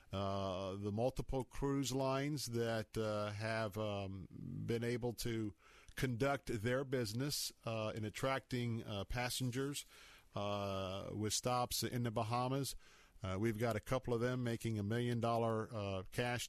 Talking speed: 135 wpm